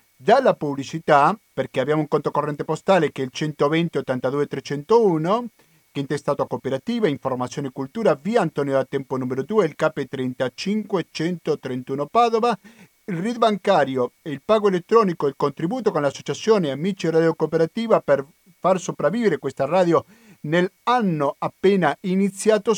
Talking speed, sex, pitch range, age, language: 140 wpm, male, 140-185 Hz, 50-69, Italian